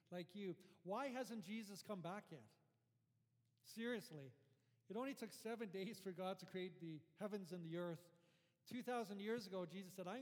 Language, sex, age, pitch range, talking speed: English, male, 40-59, 135-195 Hz, 170 wpm